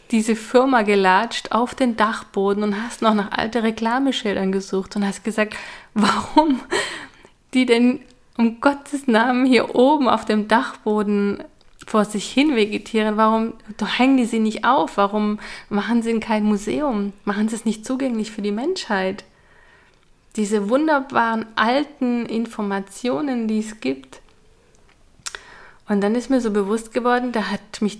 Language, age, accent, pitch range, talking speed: German, 30-49, German, 195-240 Hz, 145 wpm